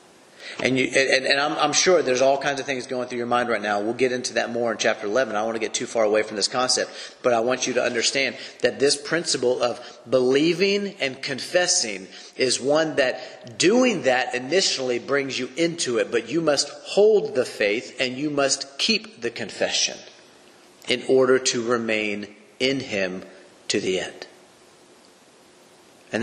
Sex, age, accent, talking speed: male, 40-59, American, 190 wpm